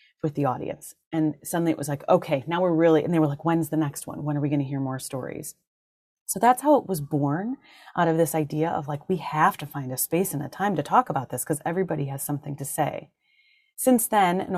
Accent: American